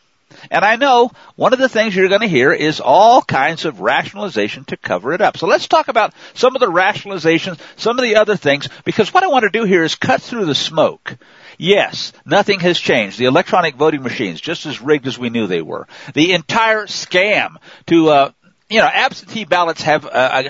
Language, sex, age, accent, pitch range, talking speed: English, male, 50-69, American, 155-225 Hz, 210 wpm